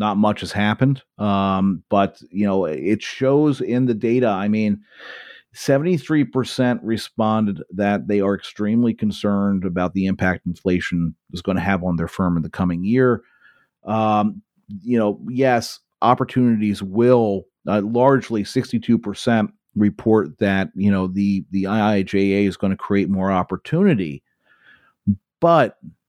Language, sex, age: English, male, 40-59